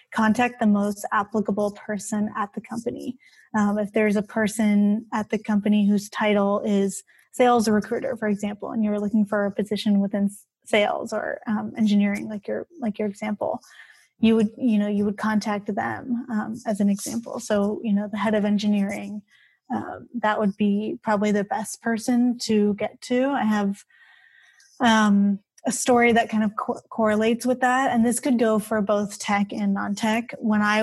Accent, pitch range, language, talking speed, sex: American, 205-235 Hz, English, 175 wpm, female